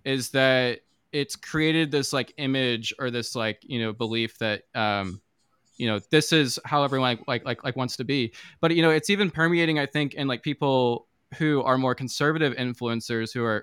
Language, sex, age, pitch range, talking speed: English, male, 20-39, 120-150 Hz, 200 wpm